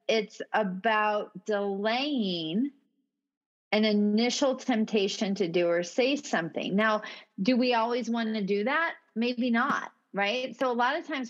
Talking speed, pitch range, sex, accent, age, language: 145 wpm, 200-260 Hz, female, American, 40-59, English